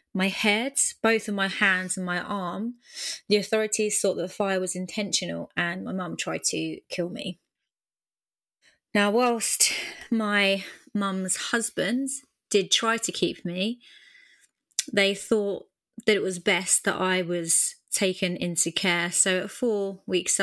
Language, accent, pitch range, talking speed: English, British, 180-215 Hz, 145 wpm